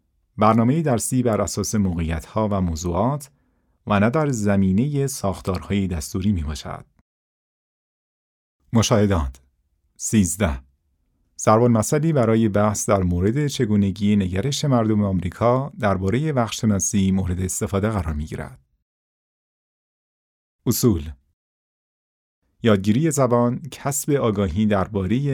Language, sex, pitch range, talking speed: Persian, male, 90-120 Hz, 90 wpm